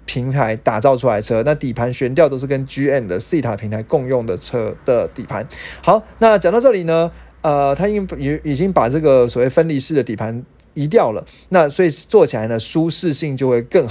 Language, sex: Chinese, male